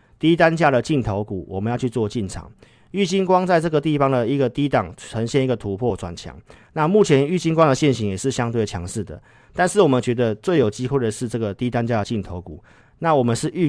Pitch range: 110-140 Hz